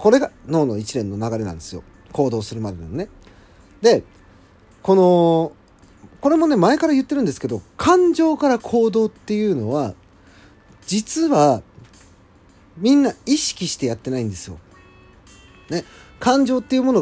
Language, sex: Japanese, male